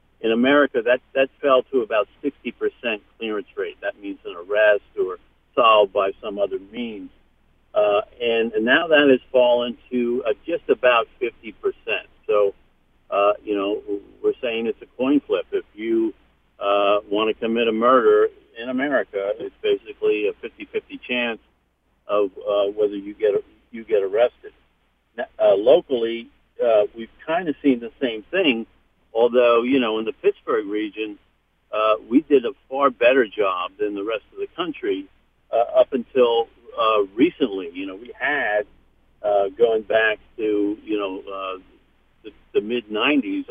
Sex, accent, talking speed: male, American, 160 wpm